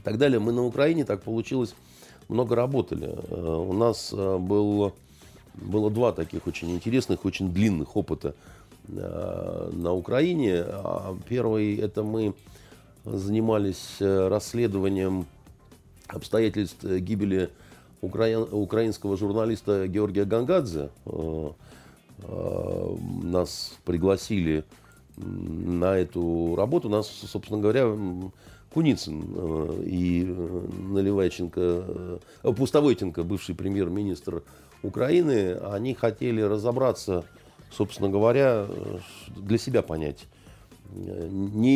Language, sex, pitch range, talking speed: Russian, male, 90-115 Hz, 80 wpm